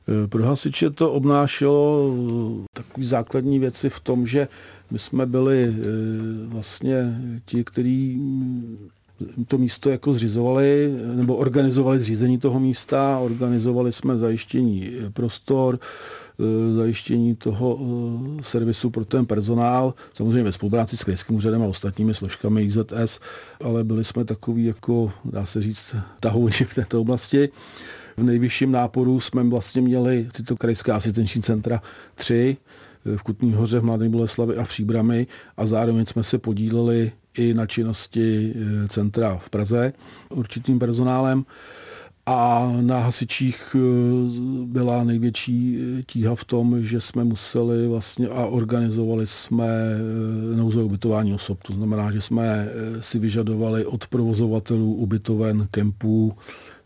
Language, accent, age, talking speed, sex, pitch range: Czech, native, 50-69, 120 wpm, male, 110-125 Hz